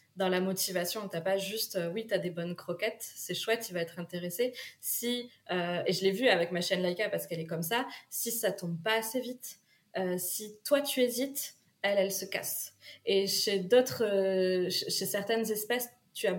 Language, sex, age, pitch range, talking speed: French, female, 20-39, 185-220 Hz, 215 wpm